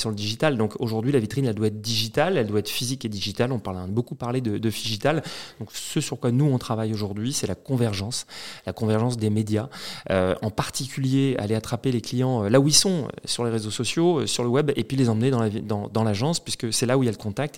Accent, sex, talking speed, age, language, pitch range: French, male, 270 wpm, 30-49, French, 110-140 Hz